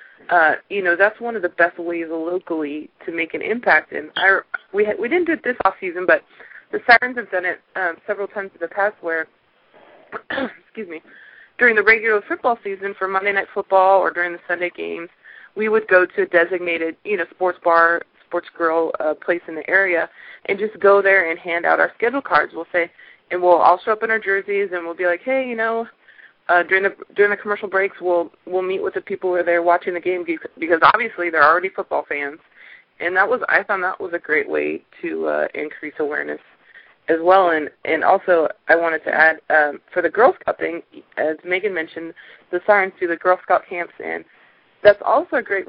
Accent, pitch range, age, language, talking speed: American, 170-200 Hz, 20-39, English, 220 wpm